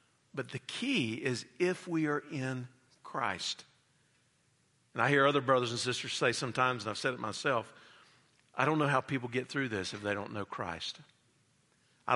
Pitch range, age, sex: 115-135 Hz, 50-69, male